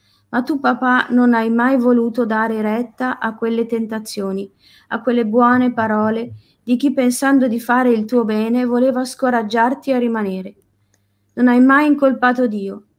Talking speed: 150 wpm